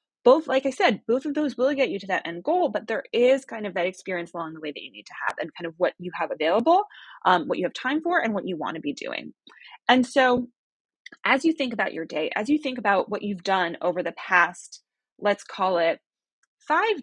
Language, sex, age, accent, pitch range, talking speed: English, female, 20-39, American, 190-295 Hz, 250 wpm